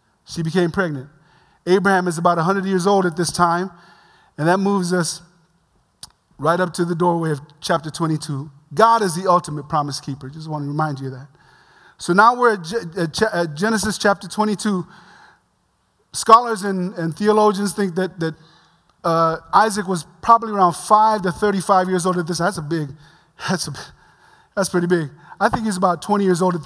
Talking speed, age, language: 180 wpm, 30-49, English